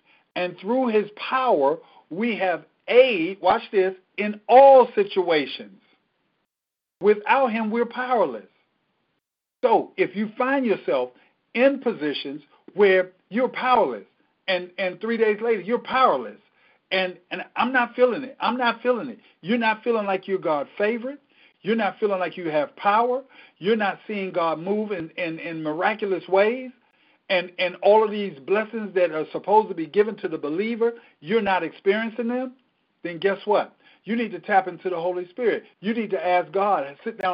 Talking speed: 170 wpm